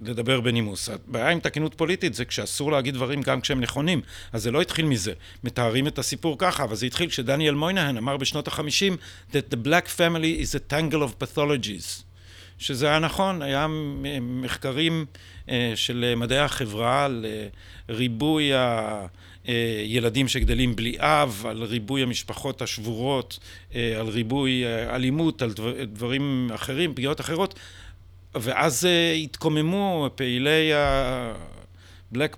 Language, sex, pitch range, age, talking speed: Hebrew, male, 115-155 Hz, 50-69, 125 wpm